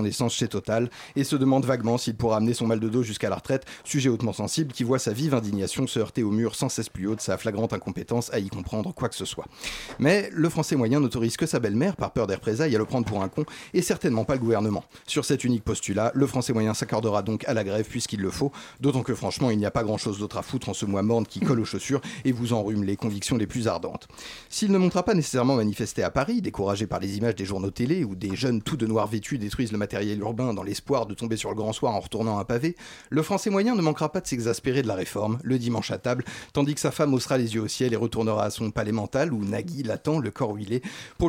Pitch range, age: 105-135 Hz, 30-49